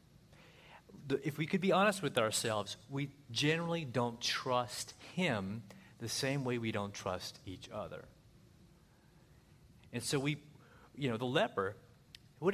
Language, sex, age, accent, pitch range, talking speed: English, male, 40-59, American, 110-150 Hz, 135 wpm